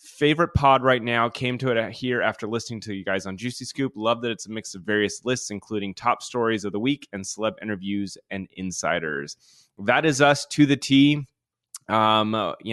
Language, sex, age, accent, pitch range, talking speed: English, male, 20-39, American, 100-120 Hz, 200 wpm